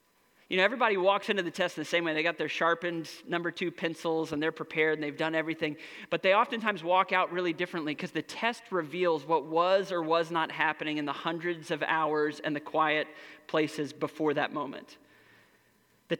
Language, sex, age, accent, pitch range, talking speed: English, male, 30-49, American, 165-200 Hz, 200 wpm